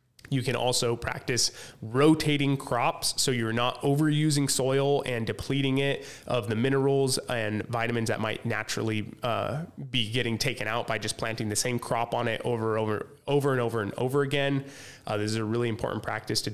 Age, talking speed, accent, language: 20-39, 185 wpm, American, English